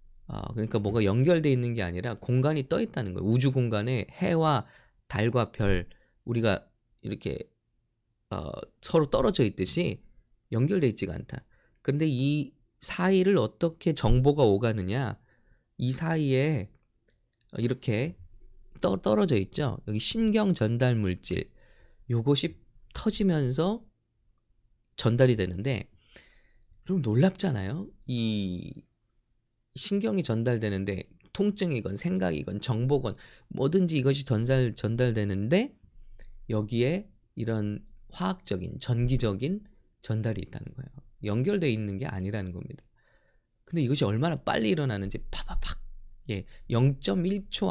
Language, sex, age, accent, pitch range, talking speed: English, male, 20-39, Korean, 105-145 Hz, 100 wpm